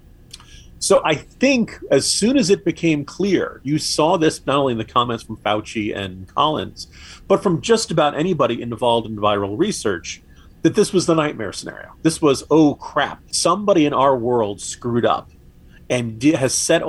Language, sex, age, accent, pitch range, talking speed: English, male, 40-59, American, 110-160 Hz, 175 wpm